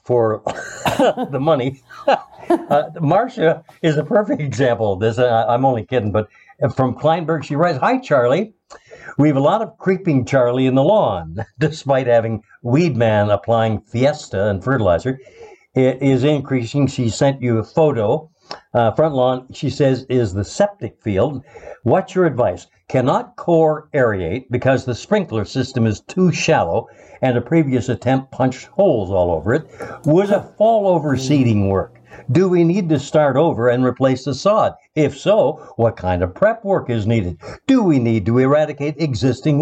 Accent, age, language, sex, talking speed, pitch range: American, 60-79, English, male, 165 wpm, 120-165 Hz